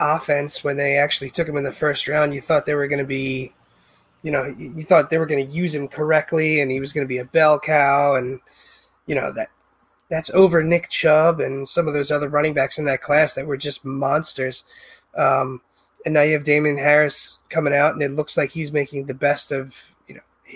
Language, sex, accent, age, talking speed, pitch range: English, male, American, 20-39, 230 wpm, 135-155 Hz